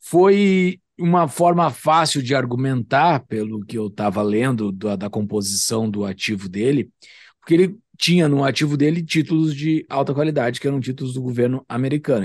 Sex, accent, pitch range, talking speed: male, Brazilian, 125-165 Hz, 160 wpm